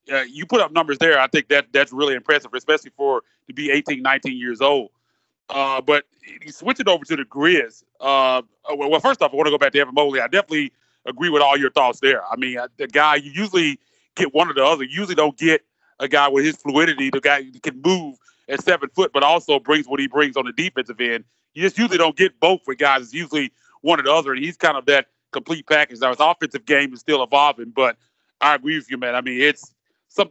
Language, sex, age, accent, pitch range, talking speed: English, male, 30-49, American, 130-160 Hz, 250 wpm